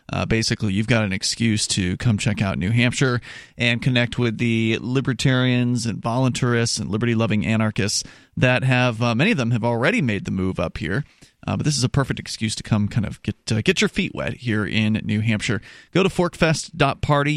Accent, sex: American, male